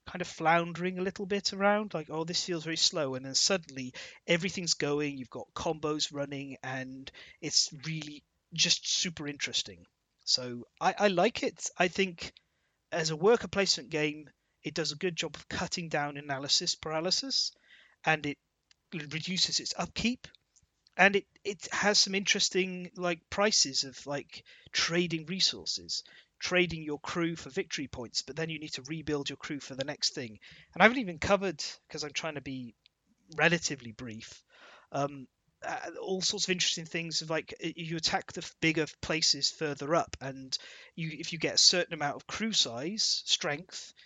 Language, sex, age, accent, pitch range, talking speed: English, male, 30-49, British, 145-185 Hz, 170 wpm